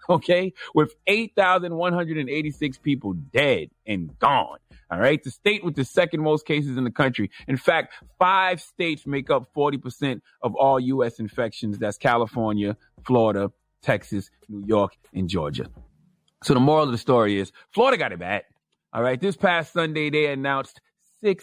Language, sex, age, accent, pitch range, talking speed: English, male, 30-49, American, 130-175 Hz, 180 wpm